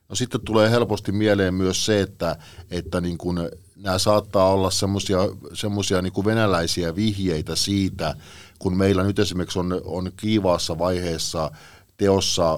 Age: 50-69